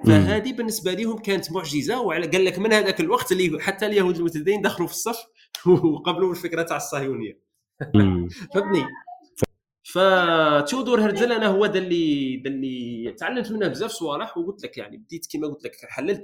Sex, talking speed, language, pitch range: male, 150 wpm, Arabic, 150-220 Hz